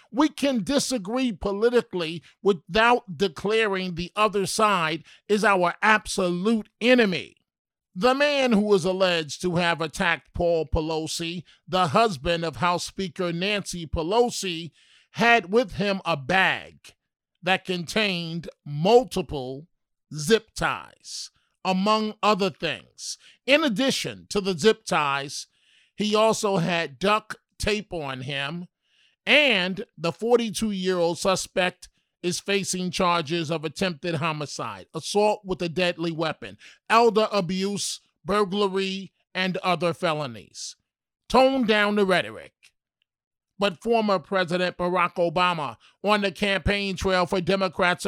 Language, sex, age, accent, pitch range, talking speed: English, male, 50-69, American, 170-210 Hz, 115 wpm